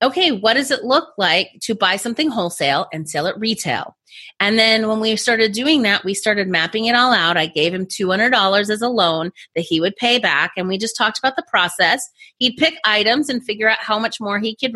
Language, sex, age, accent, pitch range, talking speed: English, female, 30-49, American, 185-250 Hz, 230 wpm